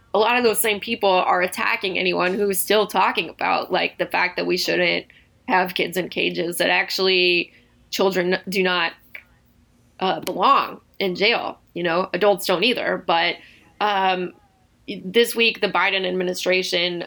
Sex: female